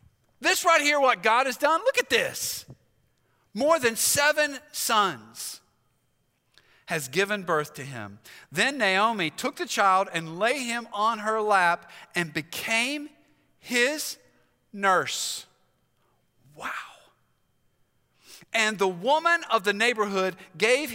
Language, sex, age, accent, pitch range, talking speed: English, male, 50-69, American, 185-280 Hz, 120 wpm